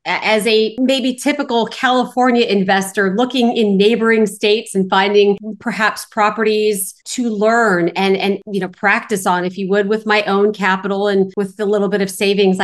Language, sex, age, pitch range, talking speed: English, female, 40-59, 195-230 Hz, 170 wpm